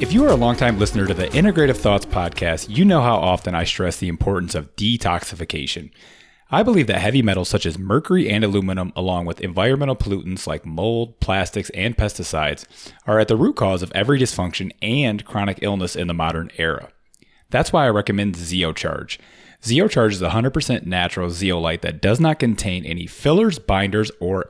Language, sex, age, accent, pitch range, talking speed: English, male, 30-49, American, 90-115 Hz, 180 wpm